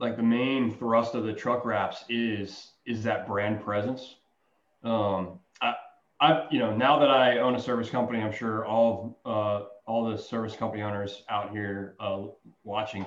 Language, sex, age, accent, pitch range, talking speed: English, male, 30-49, American, 105-130 Hz, 180 wpm